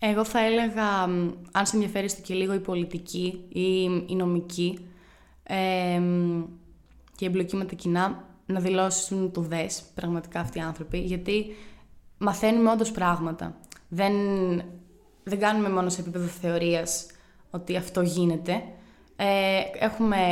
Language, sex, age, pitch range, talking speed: Greek, female, 20-39, 175-195 Hz, 130 wpm